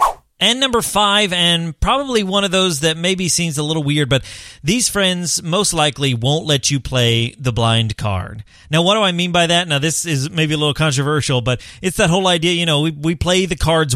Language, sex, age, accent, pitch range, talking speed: English, male, 30-49, American, 125-165 Hz, 225 wpm